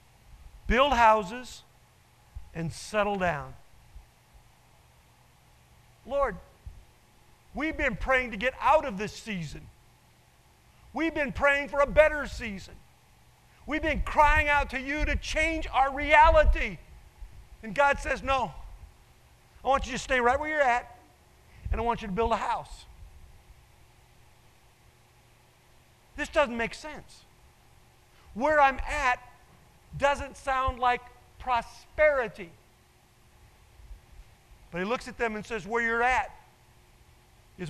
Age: 50-69